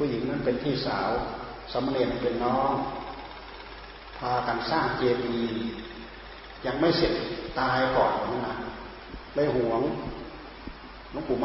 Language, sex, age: Thai, male, 30-49